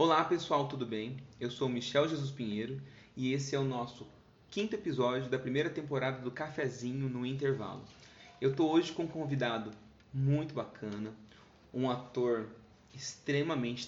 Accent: Brazilian